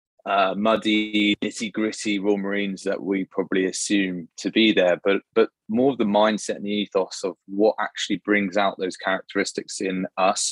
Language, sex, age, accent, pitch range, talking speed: English, male, 20-39, British, 95-110 Hz, 170 wpm